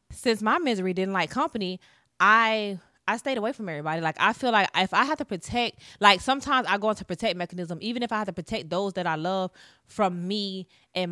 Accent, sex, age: American, female, 20-39